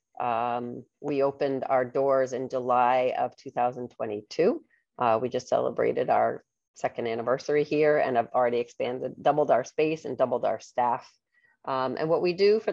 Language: English